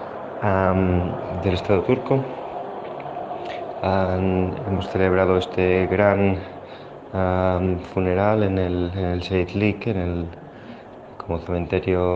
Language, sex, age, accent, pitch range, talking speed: Spanish, male, 20-39, Spanish, 90-100 Hz, 100 wpm